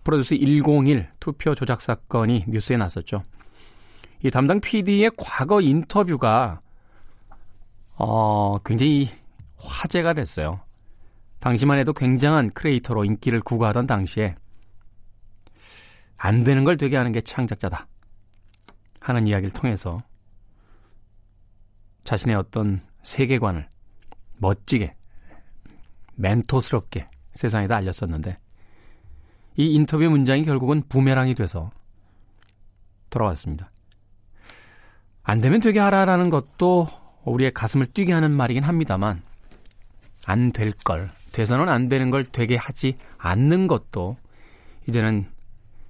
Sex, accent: male, native